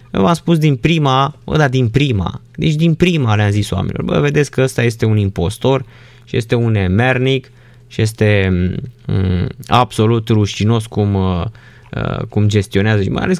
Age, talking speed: 20-39, 170 wpm